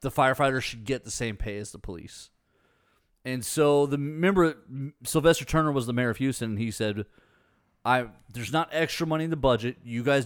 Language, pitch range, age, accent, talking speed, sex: English, 115-160 Hz, 30-49, American, 200 wpm, male